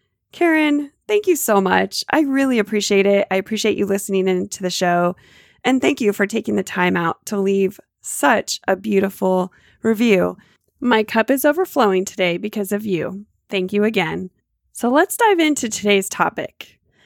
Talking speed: 165 wpm